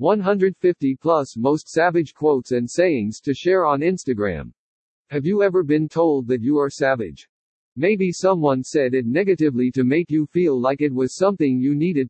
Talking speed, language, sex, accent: 175 wpm, English, male, American